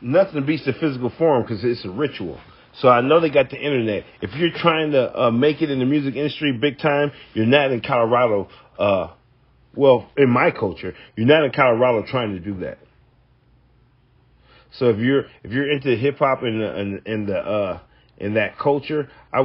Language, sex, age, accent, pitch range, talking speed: English, male, 40-59, American, 125-205 Hz, 195 wpm